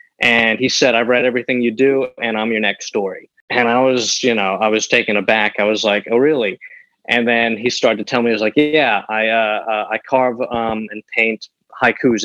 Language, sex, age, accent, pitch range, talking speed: English, male, 20-39, American, 110-130 Hz, 225 wpm